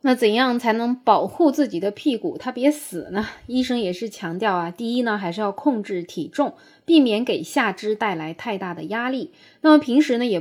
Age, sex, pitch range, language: 20-39, female, 175-240 Hz, Chinese